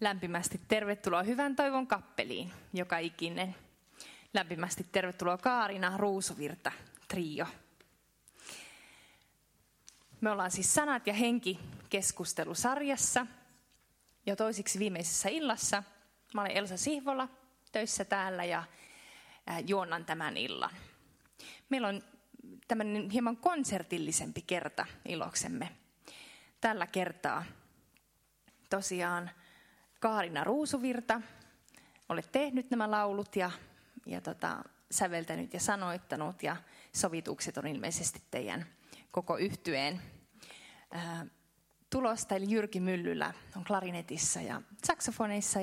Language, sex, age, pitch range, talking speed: Finnish, female, 20-39, 180-235 Hz, 90 wpm